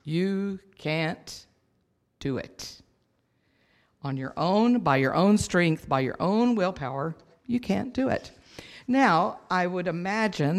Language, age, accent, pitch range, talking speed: English, 50-69, American, 140-185 Hz, 130 wpm